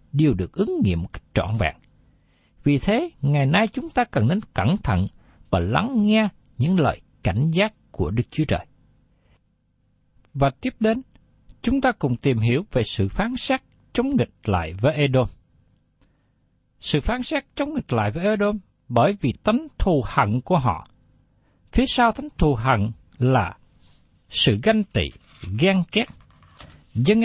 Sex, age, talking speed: male, 60-79, 155 wpm